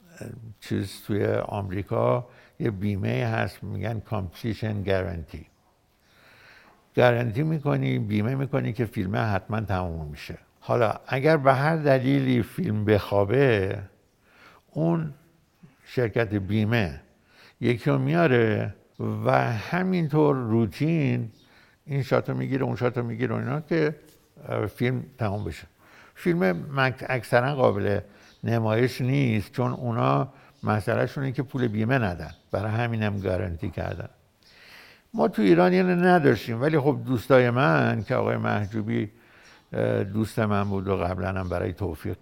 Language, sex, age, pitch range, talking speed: Persian, male, 60-79, 100-135 Hz, 115 wpm